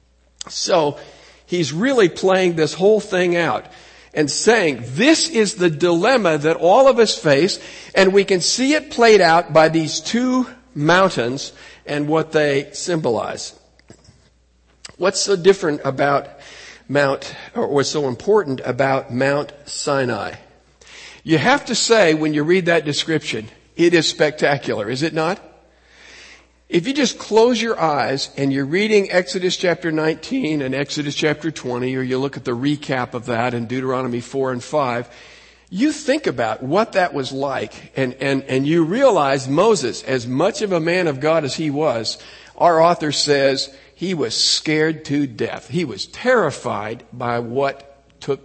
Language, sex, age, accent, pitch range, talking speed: English, male, 50-69, American, 135-185 Hz, 155 wpm